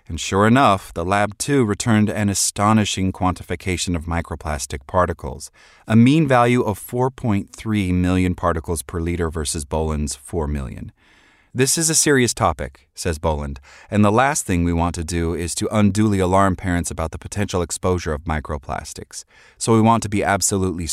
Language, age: English, 30-49